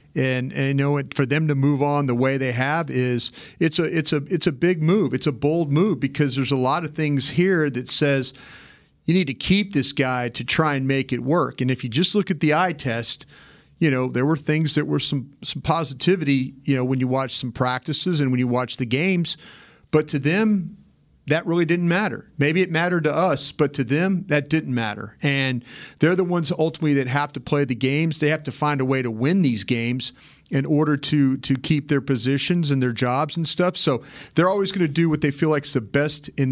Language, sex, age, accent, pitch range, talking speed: English, male, 40-59, American, 130-155 Hz, 240 wpm